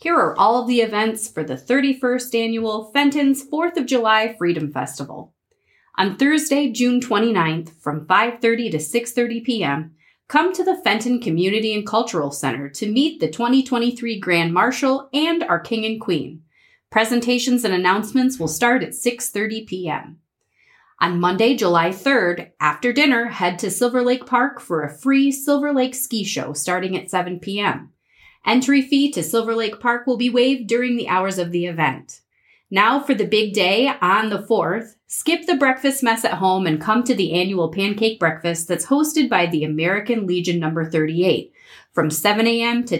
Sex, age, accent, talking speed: female, 30-49, American, 170 wpm